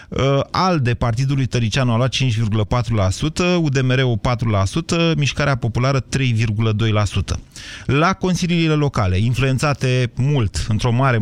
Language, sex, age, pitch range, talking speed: Romanian, male, 30-49, 110-140 Hz, 95 wpm